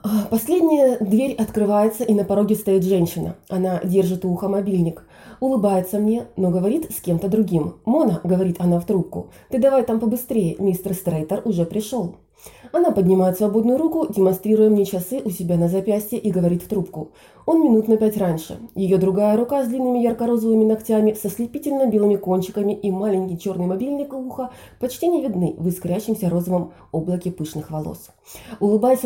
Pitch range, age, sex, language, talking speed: 185-230 Hz, 20-39, female, Russian, 160 wpm